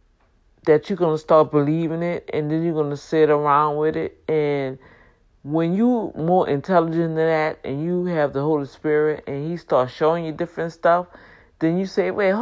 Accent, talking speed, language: American, 195 wpm, English